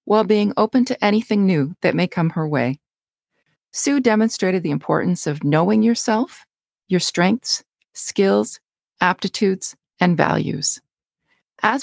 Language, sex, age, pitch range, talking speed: English, female, 40-59, 160-220 Hz, 125 wpm